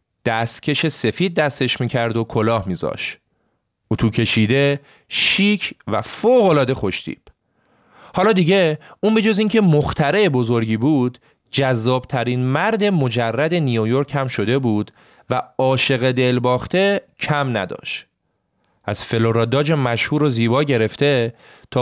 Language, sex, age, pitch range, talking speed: Persian, male, 30-49, 115-160 Hz, 115 wpm